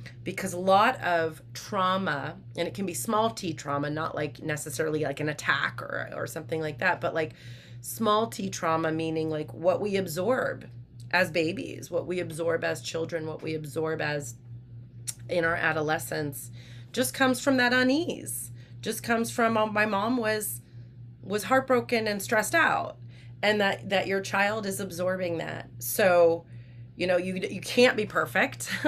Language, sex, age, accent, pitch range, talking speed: English, female, 30-49, American, 120-185 Hz, 165 wpm